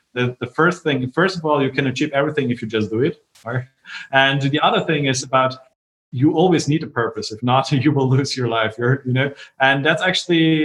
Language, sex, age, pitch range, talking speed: English, male, 30-49, 120-150 Hz, 230 wpm